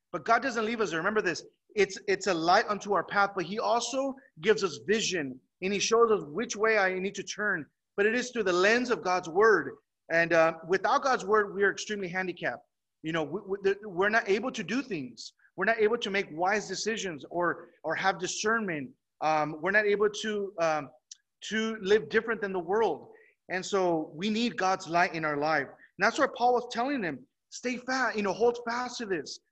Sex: male